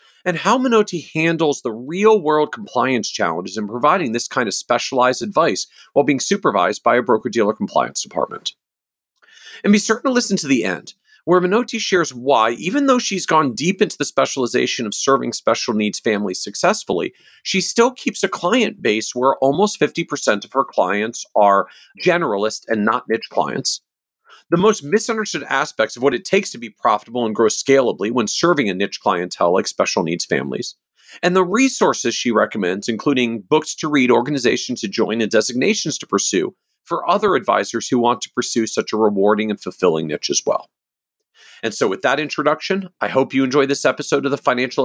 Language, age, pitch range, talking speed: English, 40-59, 120-195 Hz, 180 wpm